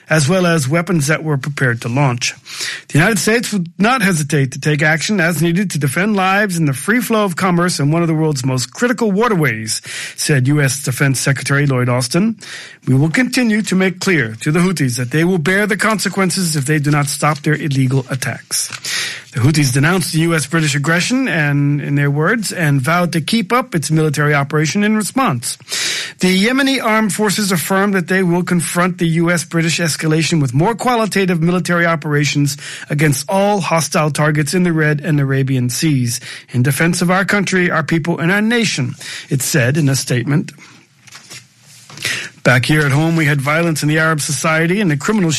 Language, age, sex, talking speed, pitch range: English, 40-59, male, 190 wpm, 145-185 Hz